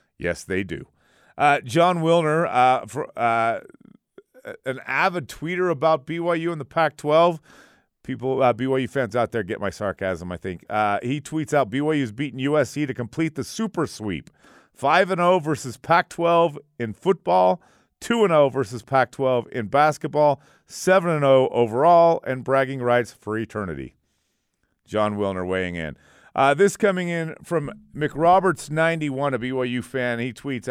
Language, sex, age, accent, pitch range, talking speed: English, male, 40-59, American, 120-165 Hz, 150 wpm